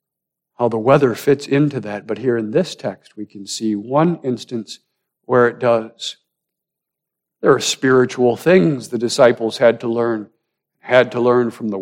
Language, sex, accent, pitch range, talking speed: English, male, American, 115-150 Hz, 170 wpm